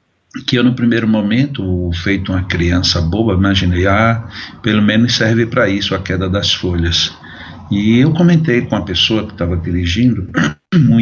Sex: male